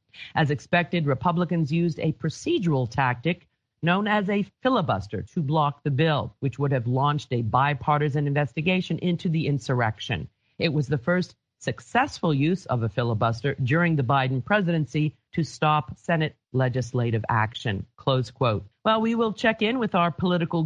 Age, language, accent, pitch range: 40-59, English, American, 125-165 Hz